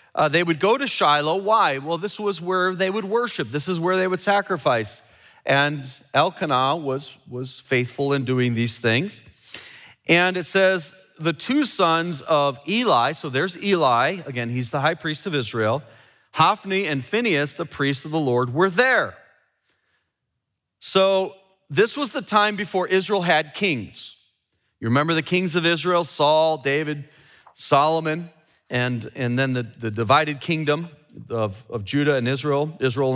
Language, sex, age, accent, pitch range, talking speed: English, male, 30-49, American, 140-185 Hz, 160 wpm